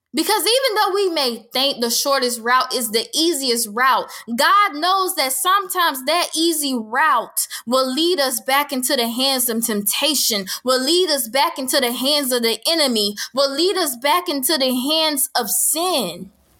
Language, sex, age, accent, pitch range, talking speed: English, female, 10-29, American, 250-345 Hz, 175 wpm